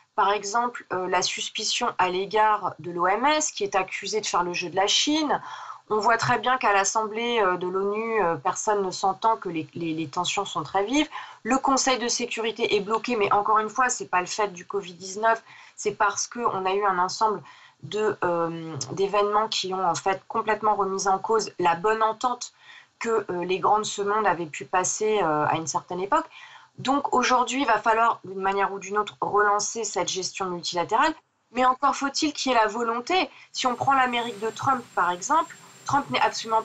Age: 30-49